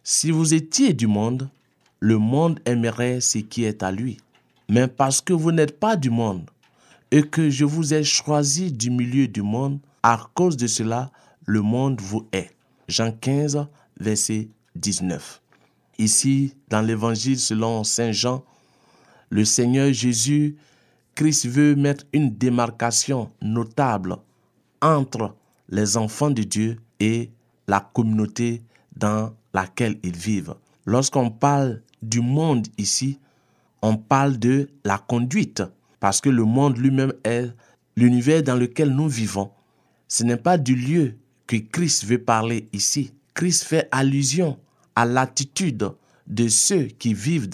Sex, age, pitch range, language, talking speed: male, 50-69, 110-140 Hz, French, 140 wpm